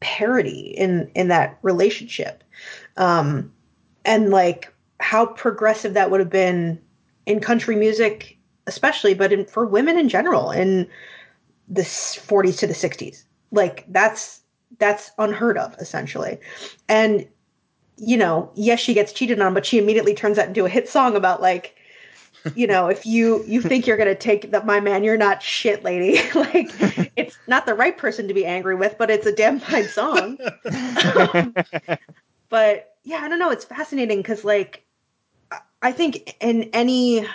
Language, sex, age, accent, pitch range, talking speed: English, female, 20-39, American, 190-230 Hz, 160 wpm